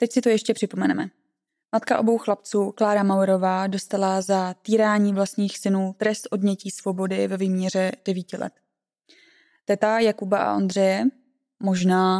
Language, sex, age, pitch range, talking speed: Czech, female, 20-39, 190-210 Hz, 135 wpm